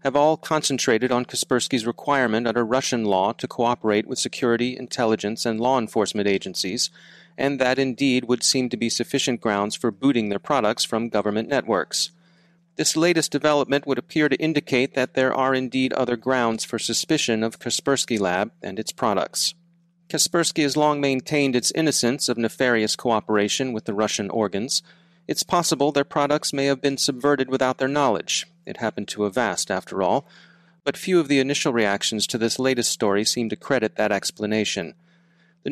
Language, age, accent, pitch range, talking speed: English, 30-49, American, 115-145 Hz, 170 wpm